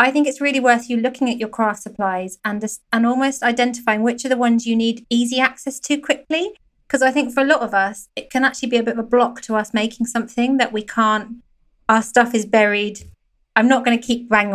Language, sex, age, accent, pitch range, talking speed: English, female, 20-39, British, 210-250 Hz, 245 wpm